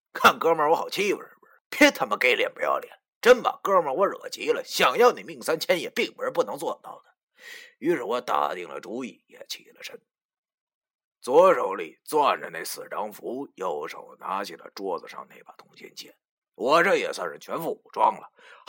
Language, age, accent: Chinese, 30-49, native